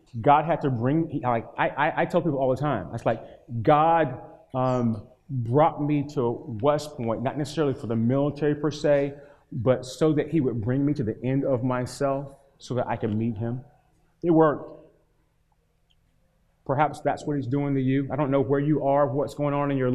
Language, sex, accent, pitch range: English, male, American, 125-155 Hz